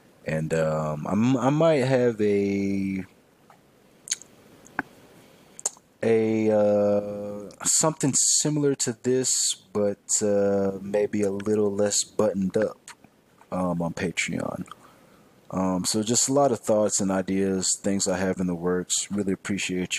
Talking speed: 125 wpm